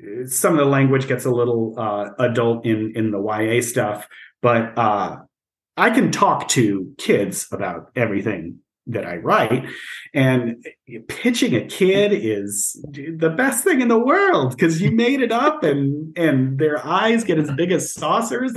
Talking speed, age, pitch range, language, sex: 165 wpm, 40-59, 115-165 Hz, English, male